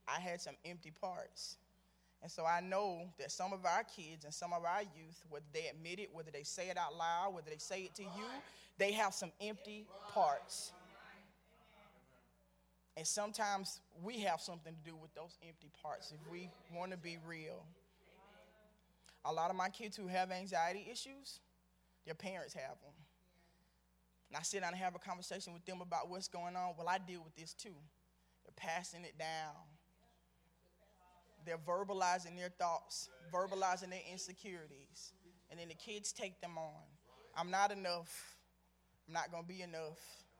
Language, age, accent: English, 20-39, American